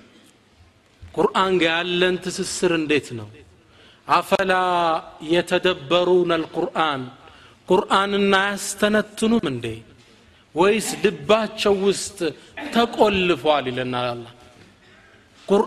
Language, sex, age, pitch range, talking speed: Amharic, male, 30-49, 135-215 Hz, 75 wpm